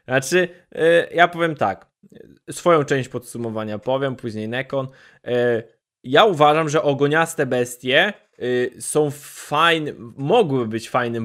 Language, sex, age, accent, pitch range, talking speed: Polish, male, 20-39, native, 125-160 Hz, 105 wpm